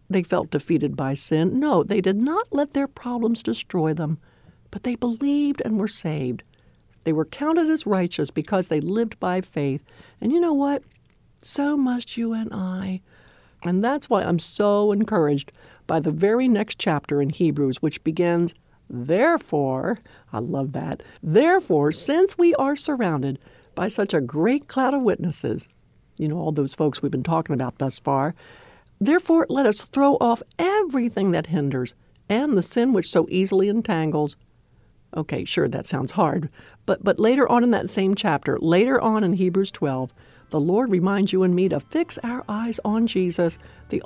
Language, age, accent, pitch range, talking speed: English, 60-79, American, 150-235 Hz, 175 wpm